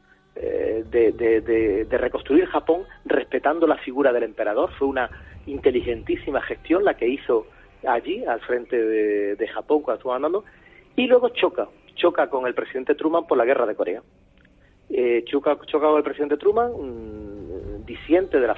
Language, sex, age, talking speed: Spanish, male, 40-59, 160 wpm